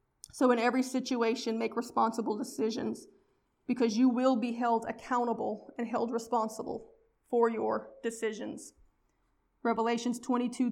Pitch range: 225-250 Hz